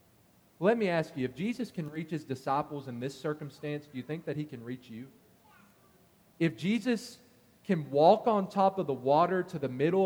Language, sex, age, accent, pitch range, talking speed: English, male, 40-59, American, 145-180 Hz, 195 wpm